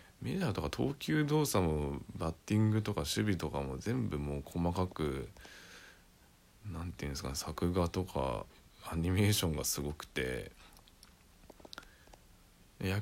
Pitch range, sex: 75-95 Hz, male